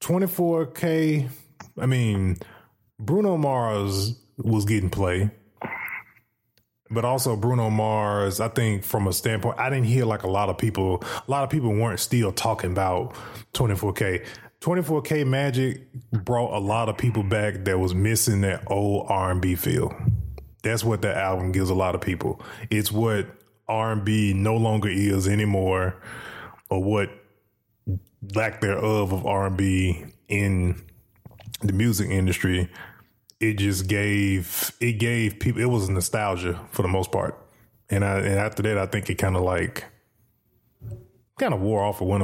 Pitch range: 95-115 Hz